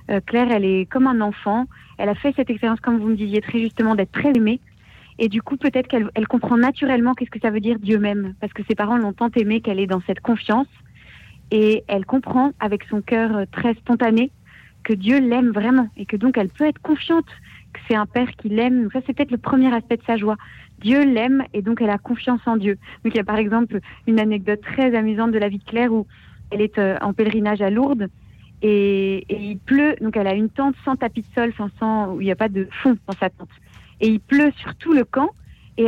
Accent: French